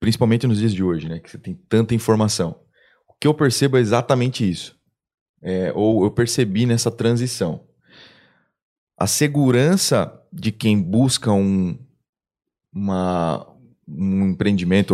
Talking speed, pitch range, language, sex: 135 wpm, 110-155 Hz, Portuguese, male